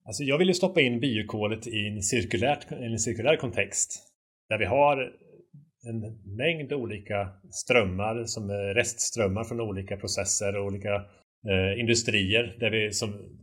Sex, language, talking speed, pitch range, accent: male, Swedish, 145 wpm, 100-120 Hz, Norwegian